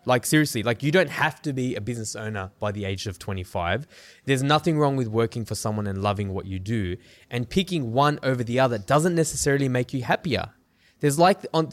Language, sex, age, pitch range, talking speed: English, male, 20-39, 110-145 Hz, 215 wpm